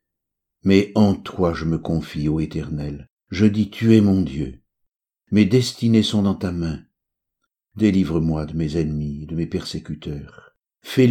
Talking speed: 150 wpm